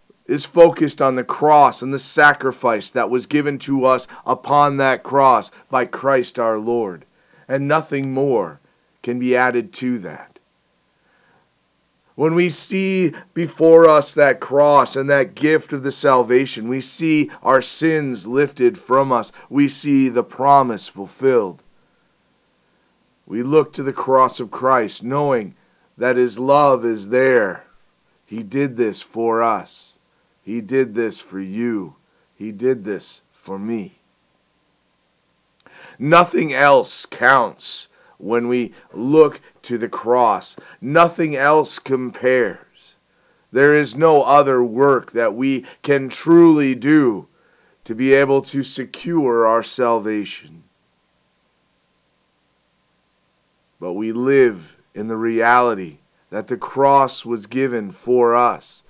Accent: American